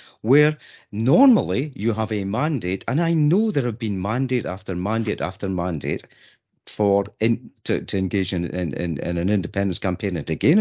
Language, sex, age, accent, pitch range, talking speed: English, male, 50-69, British, 90-125 Hz, 180 wpm